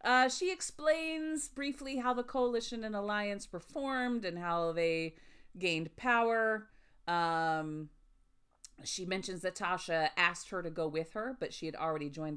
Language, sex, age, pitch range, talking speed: English, female, 40-59, 145-220 Hz, 155 wpm